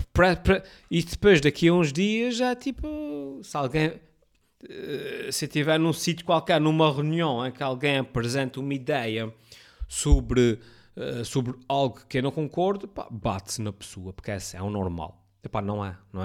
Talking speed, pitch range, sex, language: 165 wpm, 110-165 Hz, male, Portuguese